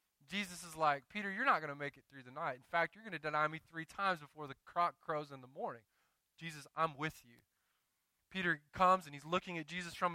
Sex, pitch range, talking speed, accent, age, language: male, 175-245 Hz, 240 wpm, American, 20-39, English